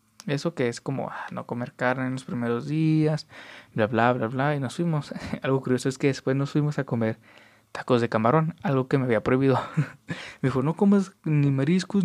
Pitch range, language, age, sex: 125-165 Hz, Spanish, 20-39, male